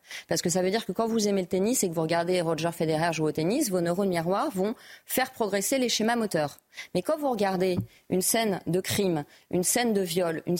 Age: 30-49